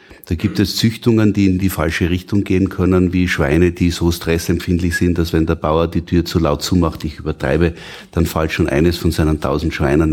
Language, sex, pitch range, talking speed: German, male, 80-100 Hz, 215 wpm